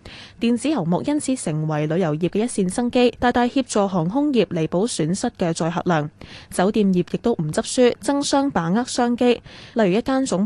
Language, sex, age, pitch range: Chinese, female, 10-29, 175-240 Hz